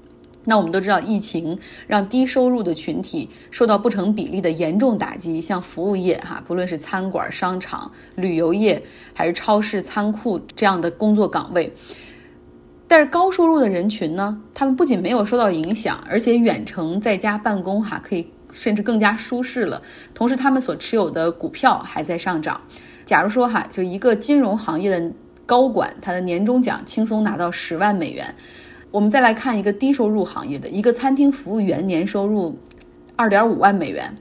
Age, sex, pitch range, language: 20-39, female, 180-250 Hz, Chinese